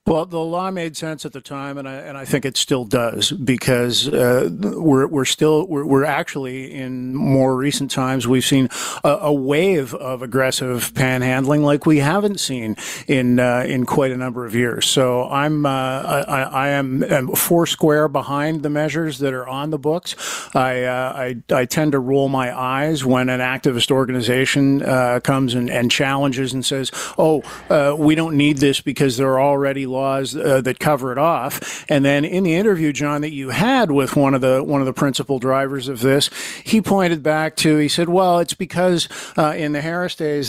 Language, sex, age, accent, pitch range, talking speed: English, male, 50-69, American, 130-155 Hz, 200 wpm